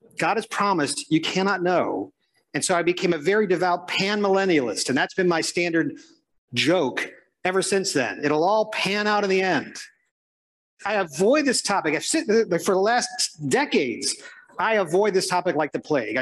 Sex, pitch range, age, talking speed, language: male, 180-235 Hz, 50-69, 170 wpm, English